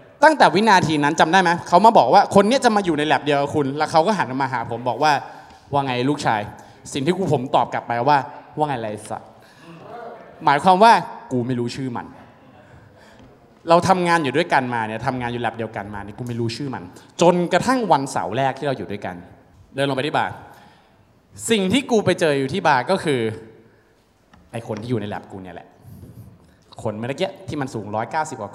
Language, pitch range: Thai, 125-190 Hz